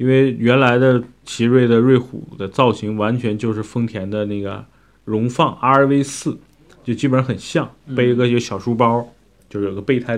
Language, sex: Chinese, male